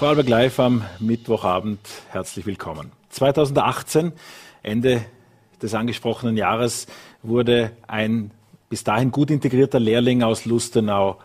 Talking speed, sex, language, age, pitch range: 105 wpm, male, German, 40-59, 105-130 Hz